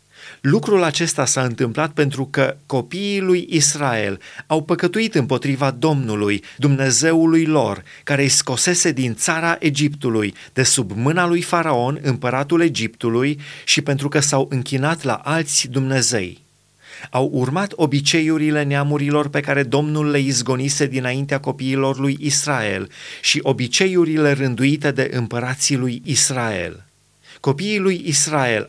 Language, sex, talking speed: Romanian, male, 125 wpm